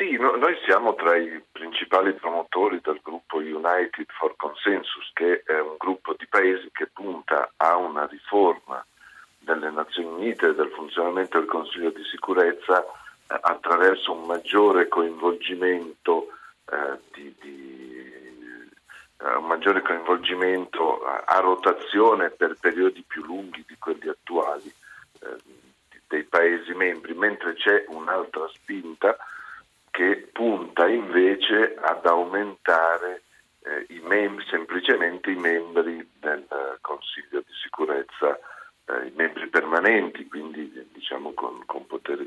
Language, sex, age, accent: Italian, male, 50-69, native